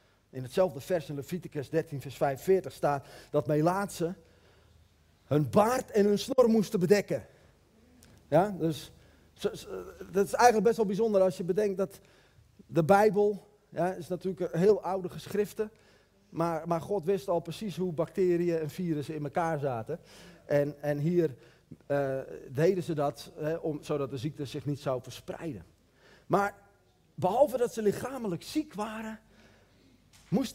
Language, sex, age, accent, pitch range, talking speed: Dutch, male, 40-59, Dutch, 145-200 Hz, 150 wpm